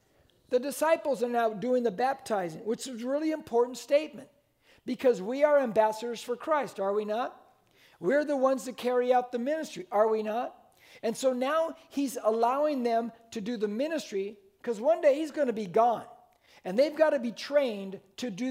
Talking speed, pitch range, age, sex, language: 185 wpm, 220-275 Hz, 50-69, male, English